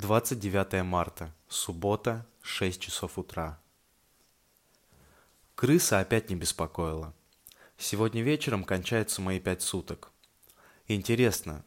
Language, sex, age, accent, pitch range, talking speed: Russian, male, 20-39, native, 90-115 Hz, 85 wpm